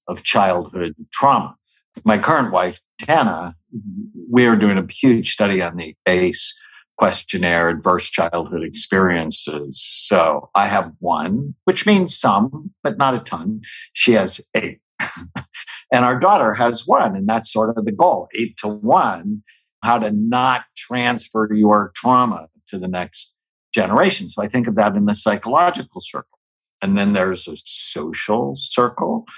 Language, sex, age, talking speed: English, male, 60-79, 150 wpm